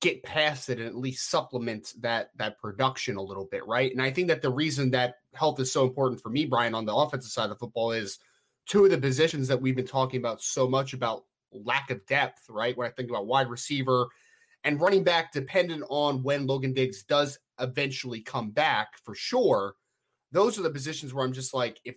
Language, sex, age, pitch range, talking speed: English, male, 20-39, 125-150 Hz, 220 wpm